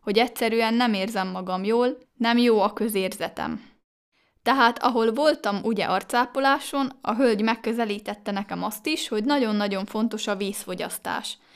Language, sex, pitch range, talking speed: Hungarian, female, 205-255 Hz, 135 wpm